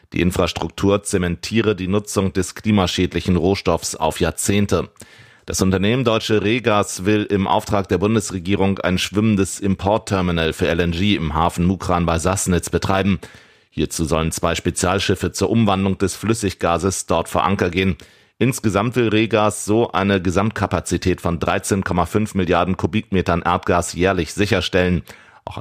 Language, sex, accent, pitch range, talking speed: German, male, German, 85-100 Hz, 130 wpm